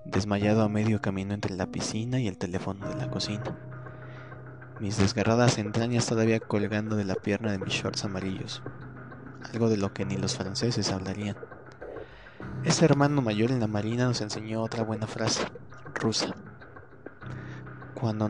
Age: 20-39